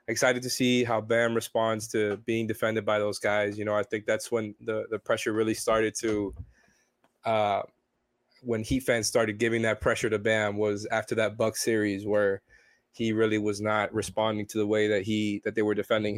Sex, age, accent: male, 20-39, American